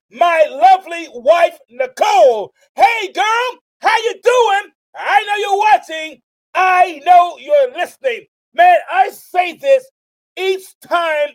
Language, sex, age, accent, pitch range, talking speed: English, male, 40-59, American, 305-395 Hz, 120 wpm